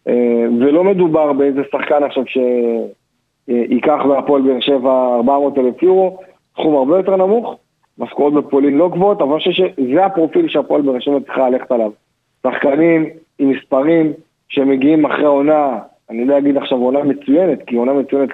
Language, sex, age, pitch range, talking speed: Hebrew, male, 40-59, 135-170 Hz, 155 wpm